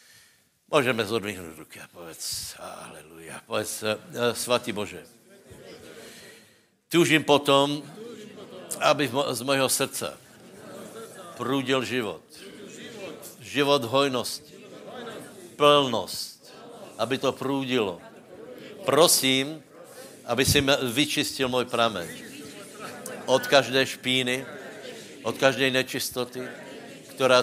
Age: 70-89